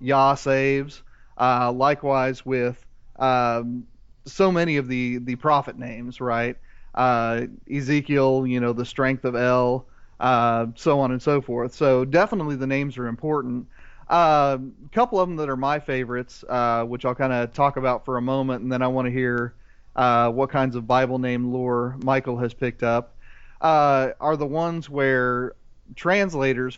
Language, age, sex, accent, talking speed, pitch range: English, 30-49, male, American, 170 wpm, 125-140 Hz